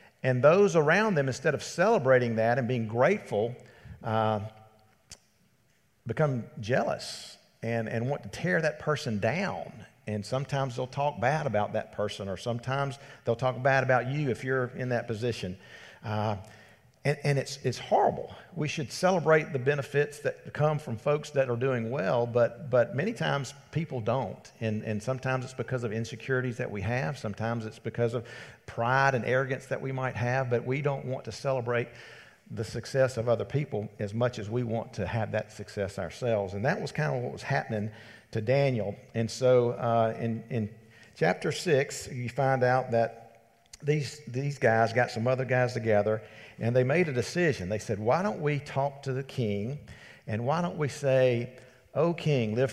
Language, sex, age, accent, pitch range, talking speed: English, male, 50-69, American, 115-140 Hz, 180 wpm